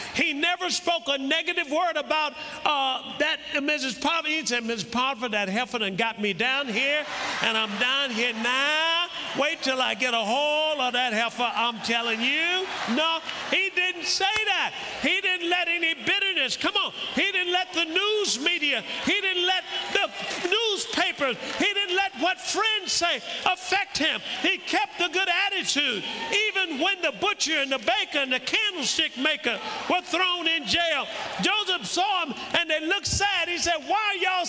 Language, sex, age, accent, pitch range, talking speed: English, male, 50-69, American, 290-370 Hz, 180 wpm